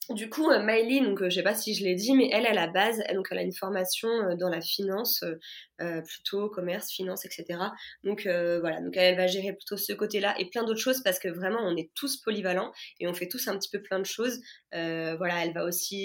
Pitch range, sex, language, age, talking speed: 175-210 Hz, female, French, 20-39, 265 wpm